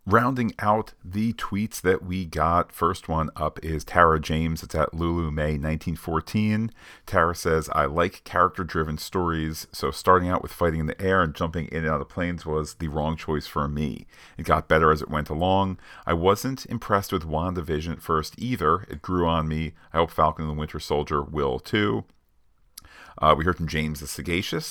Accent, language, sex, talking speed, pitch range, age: American, English, male, 190 wpm, 80-95 Hz, 40-59